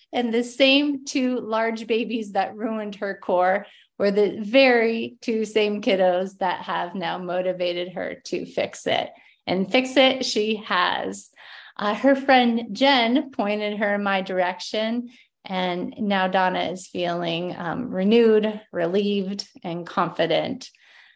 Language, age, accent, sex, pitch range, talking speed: English, 30-49, American, female, 185-225 Hz, 135 wpm